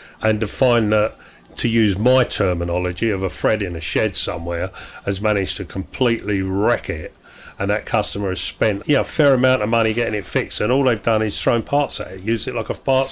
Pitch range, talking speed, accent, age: 95-115 Hz, 220 wpm, British, 40-59